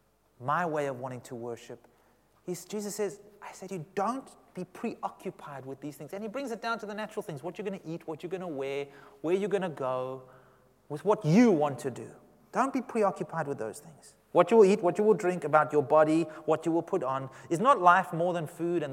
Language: English